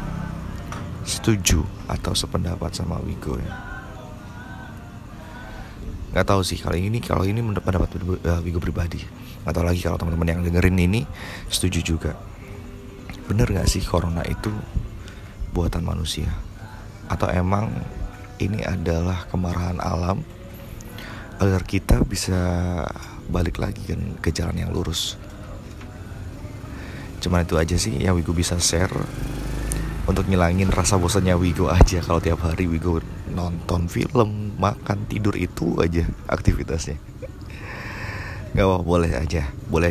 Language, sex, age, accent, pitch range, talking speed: Indonesian, male, 30-49, native, 85-100 Hz, 120 wpm